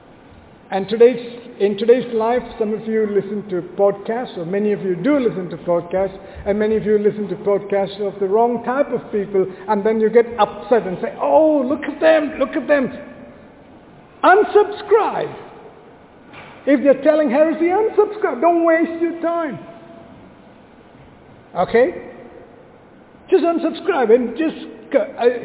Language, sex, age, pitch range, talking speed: English, male, 50-69, 205-285 Hz, 150 wpm